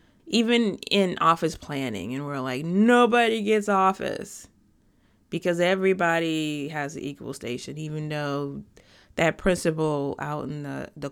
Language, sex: English, female